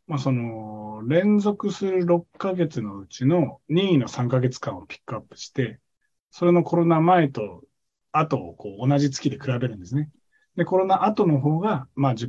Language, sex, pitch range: Japanese, male, 125-175 Hz